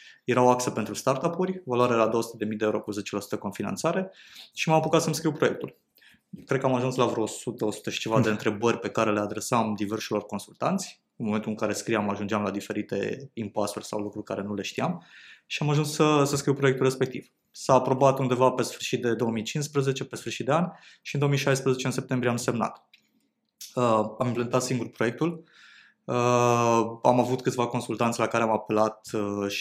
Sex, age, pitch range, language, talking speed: male, 20-39, 105-130 Hz, Romanian, 185 wpm